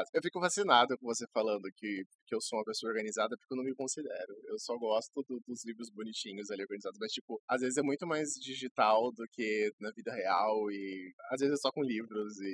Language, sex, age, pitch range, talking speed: Portuguese, male, 20-39, 125-165 Hz, 225 wpm